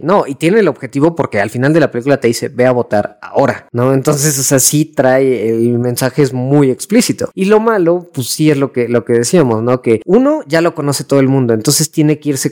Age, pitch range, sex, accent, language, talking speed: 20-39, 120-150 Hz, female, Mexican, Spanish, 250 wpm